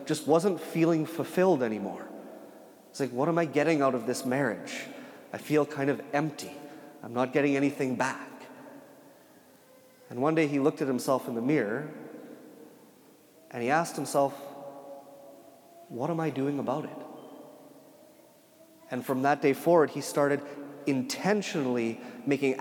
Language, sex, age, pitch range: English, male, 30-49, 130-155 Hz